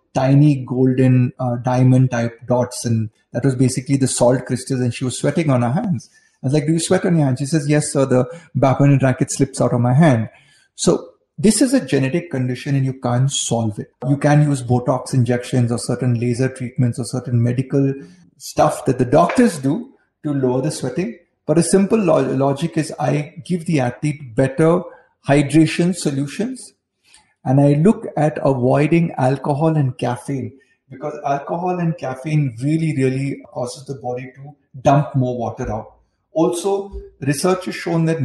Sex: male